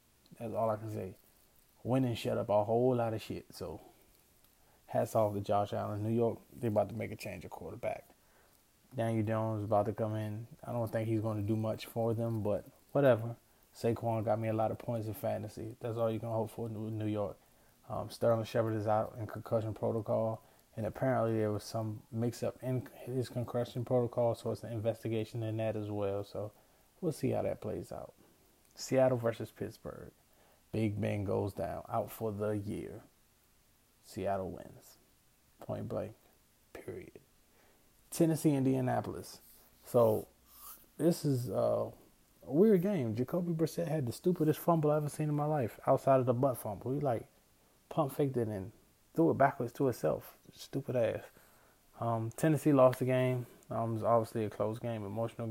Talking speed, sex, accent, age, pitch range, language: 180 wpm, male, American, 20-39, 110-125 Hz, English